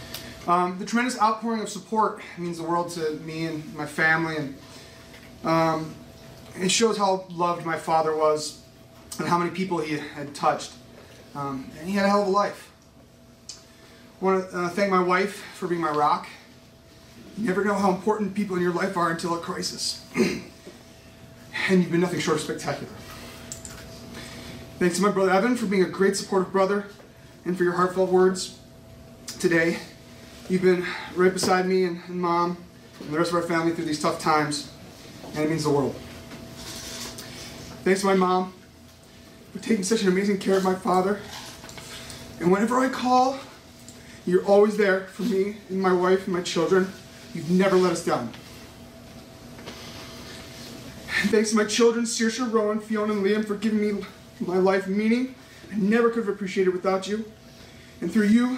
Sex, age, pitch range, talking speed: male, 30-49, 170-205 Hz, 170 wpm